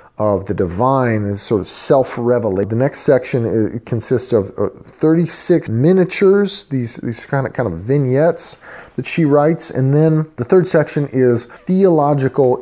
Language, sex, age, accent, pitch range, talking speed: English, male, 40-59, American, 105-140 Hz, 150 wpm